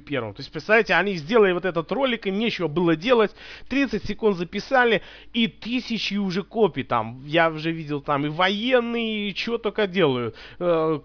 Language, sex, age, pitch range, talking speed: Russian, male, 30-49, 145-185 Hz, 175 wpm